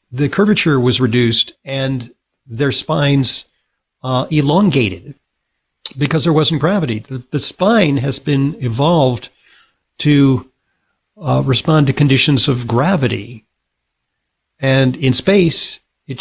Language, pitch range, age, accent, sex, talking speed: English, 125-165 Hz, 50-69, American, male, 110 wpm